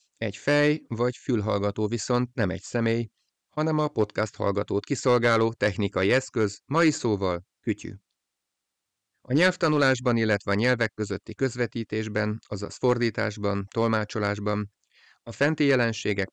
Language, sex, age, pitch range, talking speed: Hungarian, male, 30-49, 100-125 Hz, 115 wpm